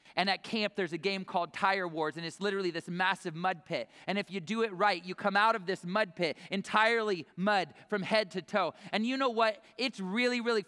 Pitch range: 185-235 Hz